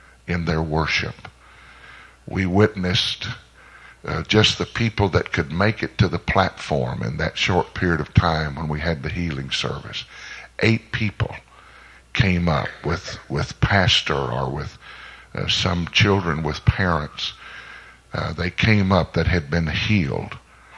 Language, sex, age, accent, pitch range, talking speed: English, male, 60-79, American, 80-100 Hz, 145 wpm